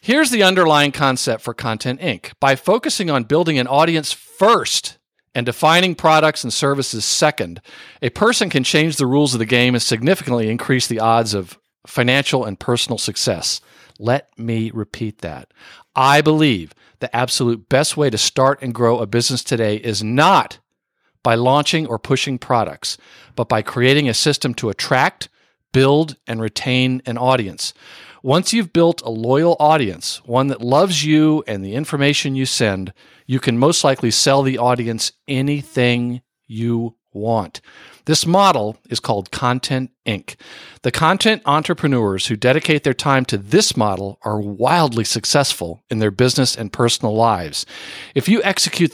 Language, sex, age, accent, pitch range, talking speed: English, male, 50-69, American, 115-150 Hz, 155 wpm